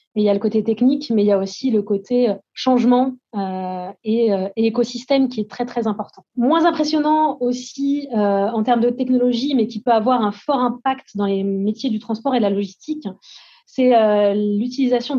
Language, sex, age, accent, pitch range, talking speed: French, female, 20-39, French, 215-260 Hz, 185 wpm